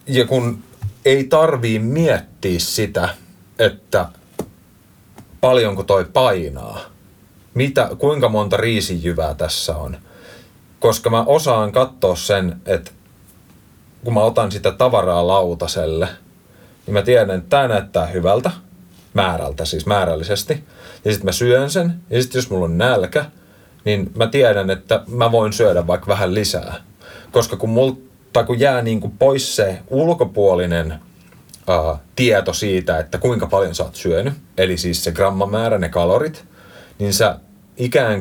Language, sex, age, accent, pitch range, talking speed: Finnish, male, 30-49, native, 95-125 Hz, 135 wpm